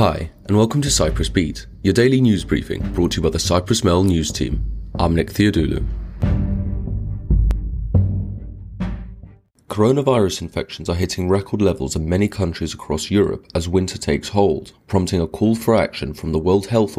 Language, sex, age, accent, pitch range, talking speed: English, male, 30-49, British, 85-105 Hz, 160 wpm